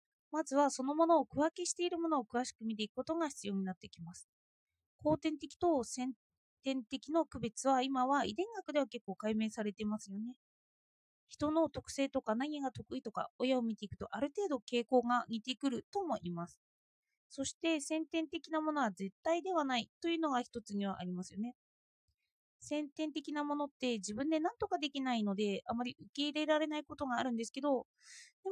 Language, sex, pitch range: Japanese, female, 220-310 Hz